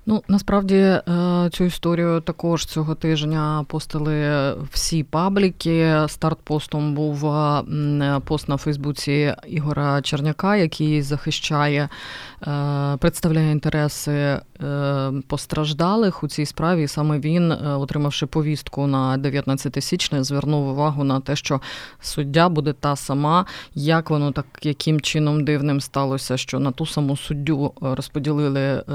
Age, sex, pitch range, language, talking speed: 20-39, female, 140-155 Hz, Ukrainian, 110 wpm